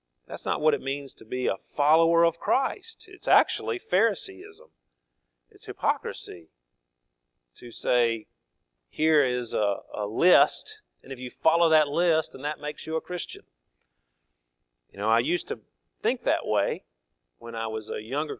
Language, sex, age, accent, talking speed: English, male, 40-59, American, 155 wpm